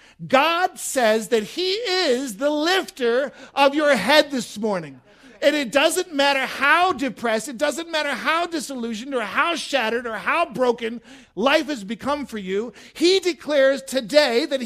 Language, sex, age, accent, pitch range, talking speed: English, male, 50-69, American, 215-300 Hz, 155 wpm